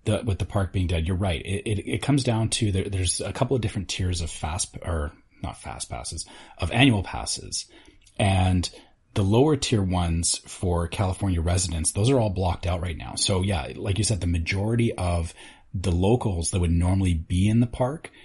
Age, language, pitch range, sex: 30-49, English, 85-105 Hz, male